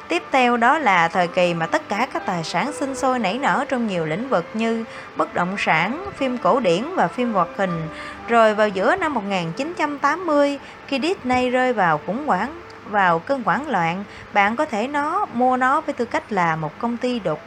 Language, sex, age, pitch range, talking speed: Vietnamese, female, 20-39, 210-275 Hz, 205 wpm